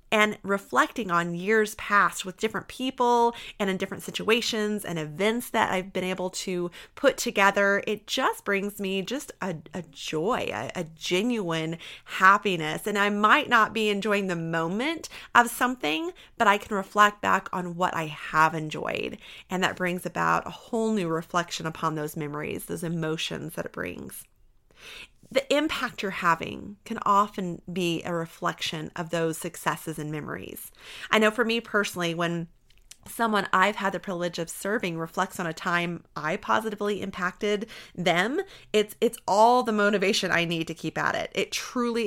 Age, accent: 30-49, American